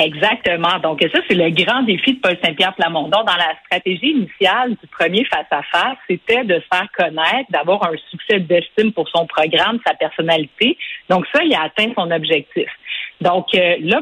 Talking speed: 175 wpm